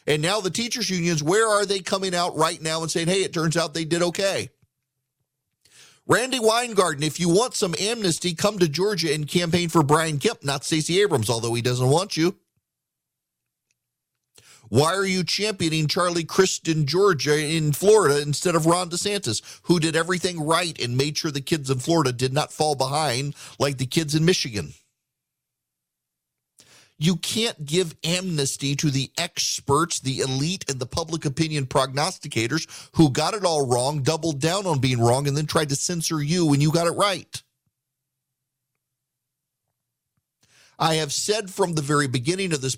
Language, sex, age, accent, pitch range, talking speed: English, male, 40-59, American, 135-175 Hz, 170 wpm